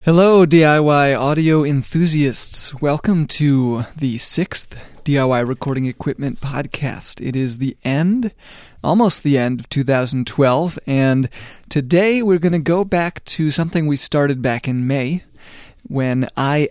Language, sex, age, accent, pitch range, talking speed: English, male, 30-49, American, 125-155 Hz, 135 wpm